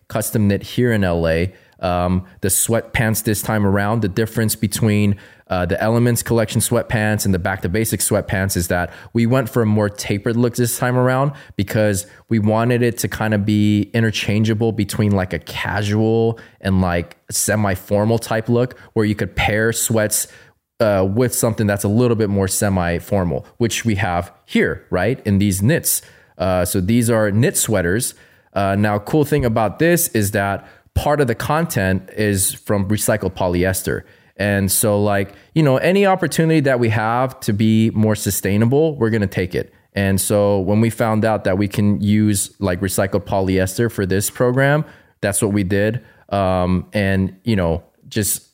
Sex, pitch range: male, 95-115 Hz